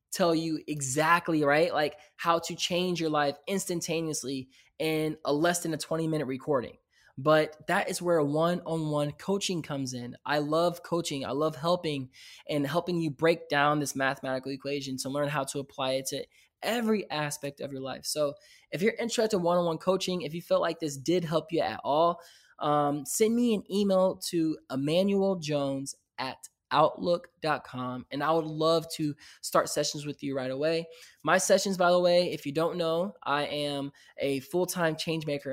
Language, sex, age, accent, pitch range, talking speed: English, male, 20-39, American, 145-175 Hz, 175 wpm